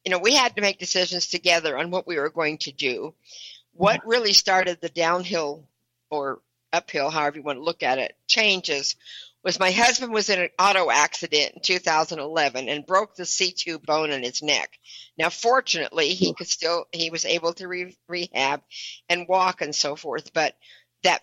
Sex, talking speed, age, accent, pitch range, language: female, 185 wpm, 60-79, American, 150-185 Hz, English